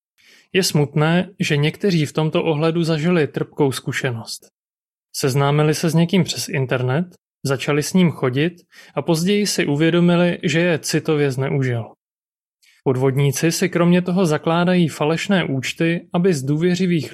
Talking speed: 135 wpm